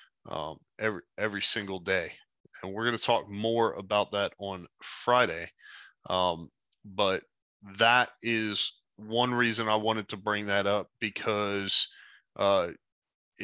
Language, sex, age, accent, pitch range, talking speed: English, male, 20-39, American, 100-115 Hz, 130 wpm